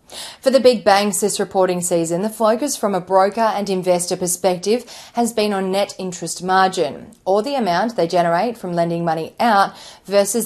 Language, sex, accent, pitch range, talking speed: English, female, Australian, 175-215 Hz, 180 wpm